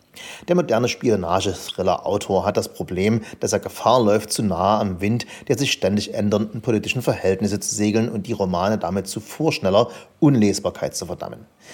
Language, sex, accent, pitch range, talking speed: German, male, German, 95-115 Hz, 160 wpm